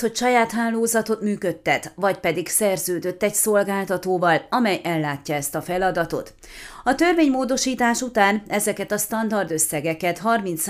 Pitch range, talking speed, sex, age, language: 170-220 Hz, 120 wpm, female, 30-49, Hungarian